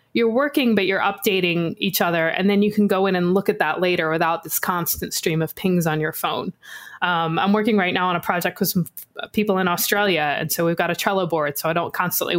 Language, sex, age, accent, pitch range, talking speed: English, female, 20-39, American, 165-210 Hz, 250 wpm